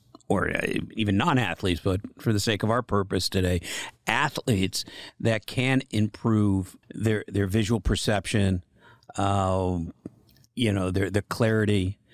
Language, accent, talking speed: English, American, 125 wpm